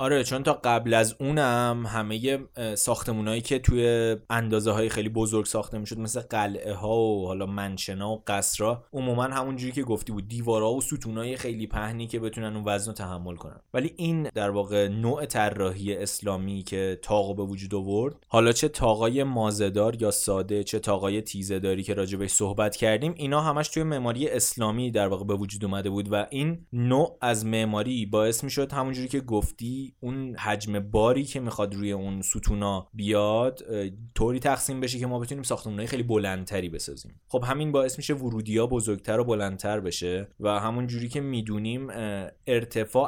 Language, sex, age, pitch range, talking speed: Persian, male, 20-39, 100-125 Hz, 165 wpm